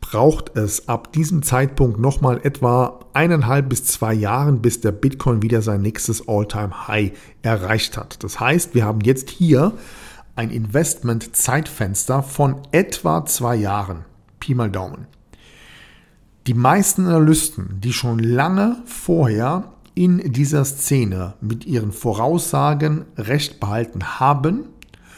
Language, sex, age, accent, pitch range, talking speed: German, male, 50-69, German, 110-145 Hz, 125 wpm